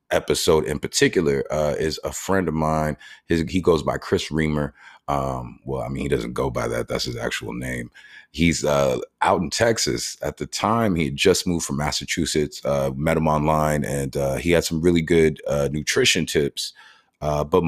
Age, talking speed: 30-49, 195 wpm